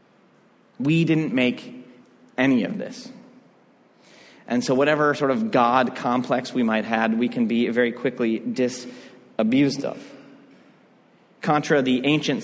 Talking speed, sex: 125 wpm, male